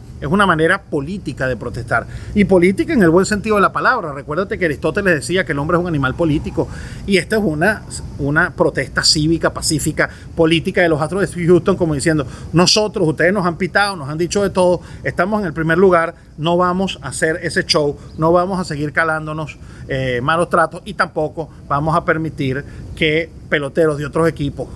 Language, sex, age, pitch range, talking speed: Spanish, male, 30-49, 150-180 Hz, 195 wpm